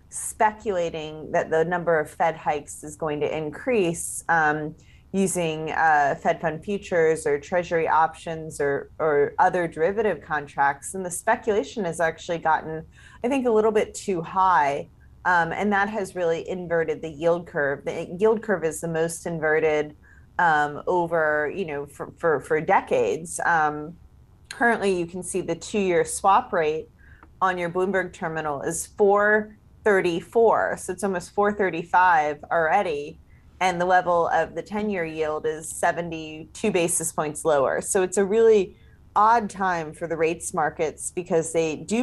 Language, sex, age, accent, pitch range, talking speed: English, female, 30-49, American, 155-190 Hz, 155 wpm